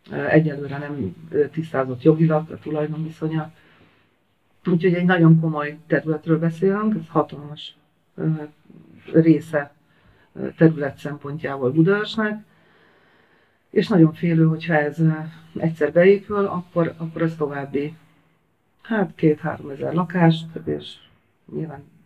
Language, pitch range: Hungarian, 145-165 Hz